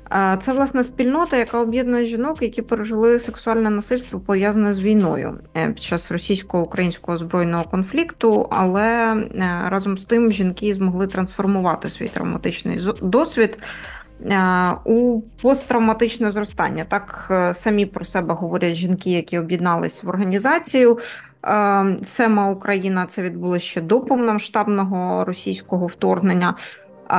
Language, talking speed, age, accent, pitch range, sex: Ukrainian, 110 wpm, 20-39, native, 175-220 Hz, female